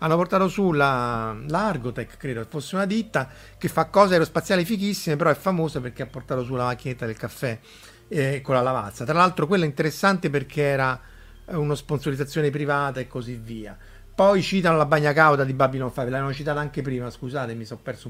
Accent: native